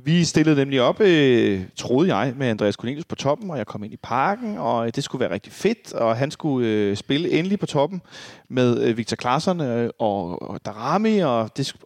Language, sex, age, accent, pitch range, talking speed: Danish, male, 30-49, native, 125-155 Hz, 200 wpm